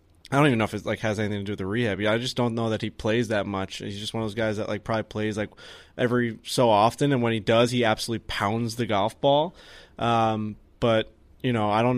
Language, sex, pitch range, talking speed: English, male, 105-130 Hz, 265 wpm